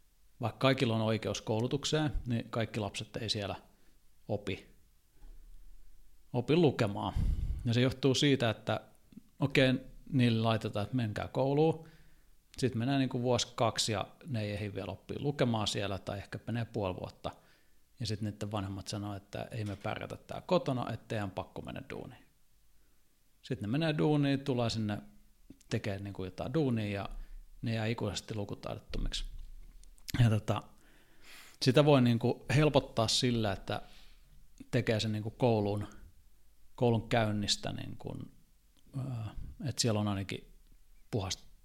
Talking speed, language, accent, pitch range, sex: 130 wpm, Finnish, native, 100-125 Hz, male